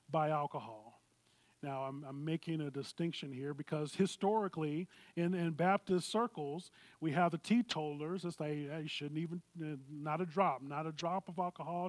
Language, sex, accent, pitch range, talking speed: English, male, American, 145-175 Hz, 165 wpm